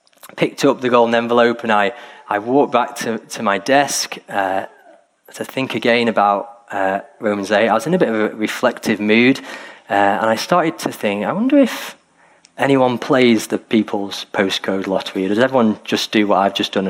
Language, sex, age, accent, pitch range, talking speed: English, male, 30-49, British, 105-155 Hz, 190 wpm